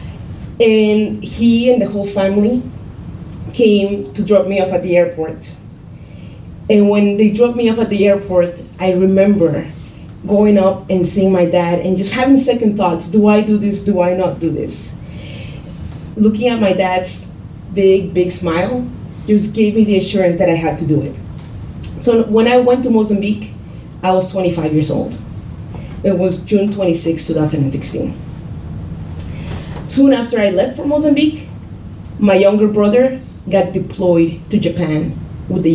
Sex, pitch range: female, 160-205 Hz